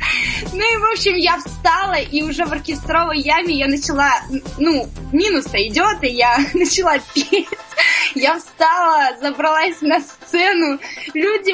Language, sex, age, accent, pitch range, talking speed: Russian, female, 20-39, native, 285-360 Hz, 135 wpm